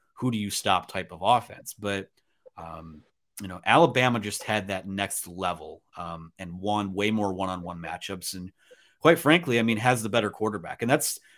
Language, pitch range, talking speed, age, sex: English, 100-130 Hz, 185 wpm, 30-49, male